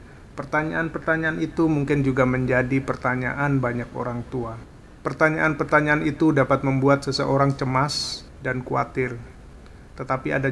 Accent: native